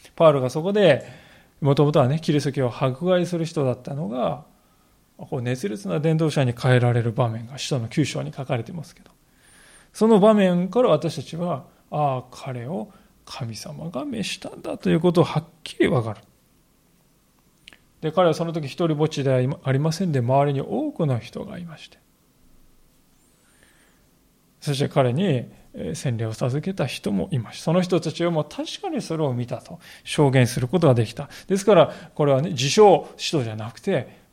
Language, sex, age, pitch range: Japanese, male, 20-39, 130-190 Hz